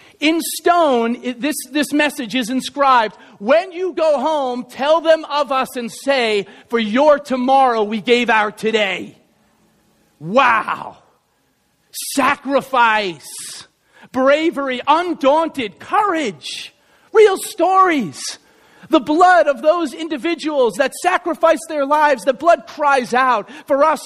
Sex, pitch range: male, 245-315 Hz